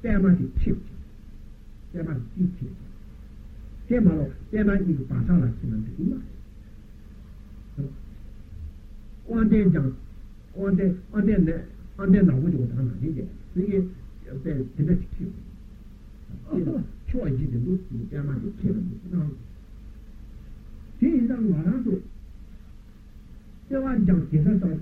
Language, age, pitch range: Italian, 60-79, 130-190 Hz